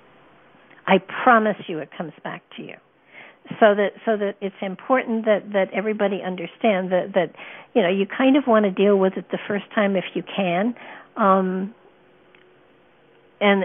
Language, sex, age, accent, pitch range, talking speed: English, female, 60-79, American, 195-220 Hz, 165 wpm